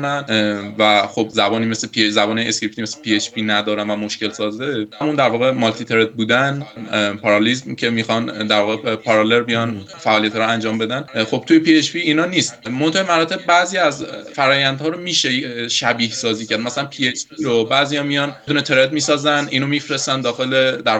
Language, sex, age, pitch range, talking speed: Persian, male, 20-39, 115-155 Hz, 180 wpm